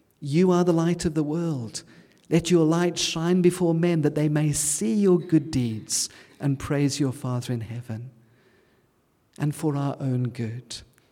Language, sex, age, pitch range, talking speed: English, male, 50-69, 130-180 Hz, 165 wpm